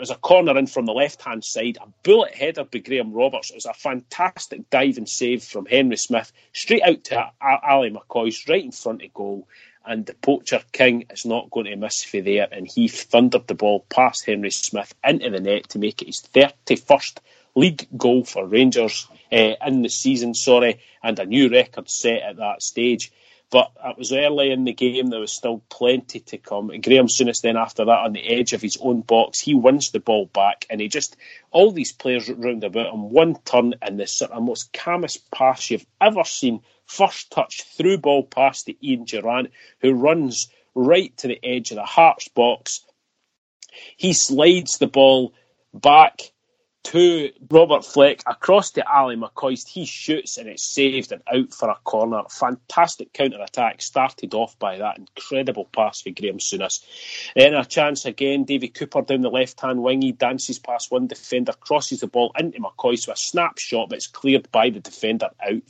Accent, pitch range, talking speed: British, 120-155 Hz, 190 wpm